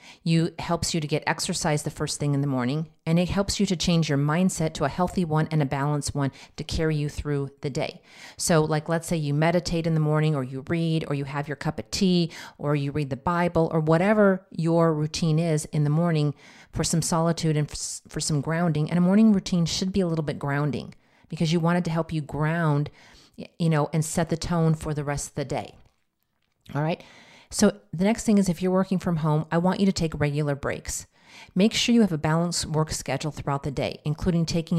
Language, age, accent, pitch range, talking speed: English, 40-59, American, 150-175 Hz, 235 wpm